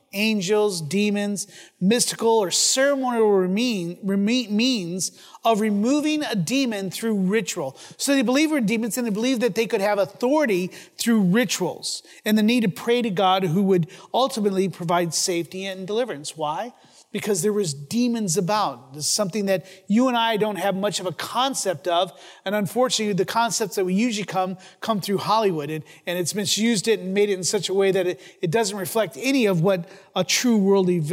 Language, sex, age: English, male, 30-49